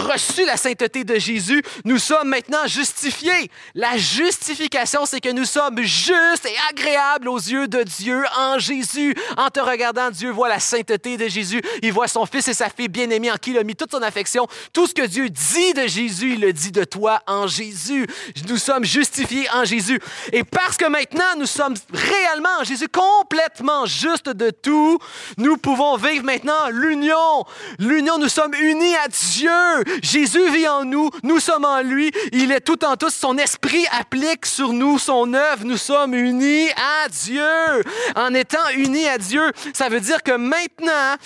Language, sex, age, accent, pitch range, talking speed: French, male, 30-49, Canadian, 240-300 Hz, 185 wpm